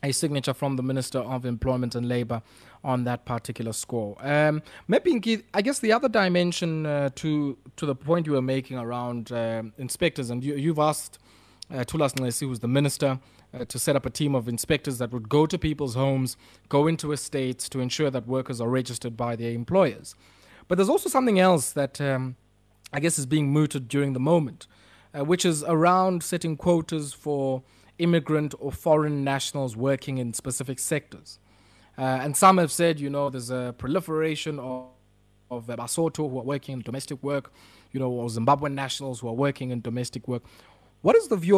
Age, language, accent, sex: 20-39, English, South African, male